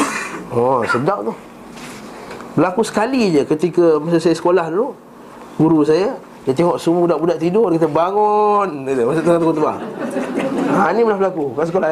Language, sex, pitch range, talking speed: Malay, male, 155-200 Hz, 145 wpm